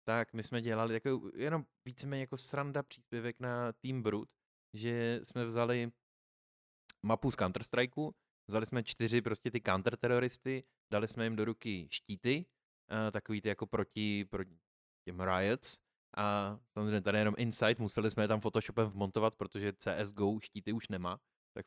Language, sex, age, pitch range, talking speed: Czech, male, 20-39, 100-120 Hz, 150 wpm